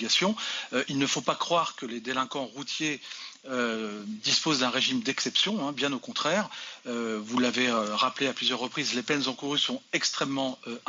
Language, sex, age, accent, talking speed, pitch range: French, male, 40-59, French, 180 wpm, 125-160 Hz